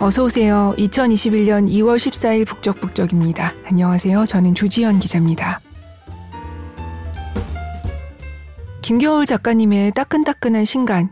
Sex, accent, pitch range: female, native, 185-225 Hz